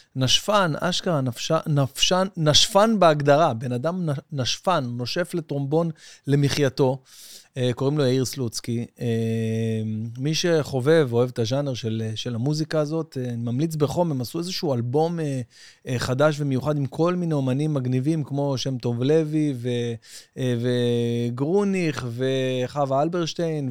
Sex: male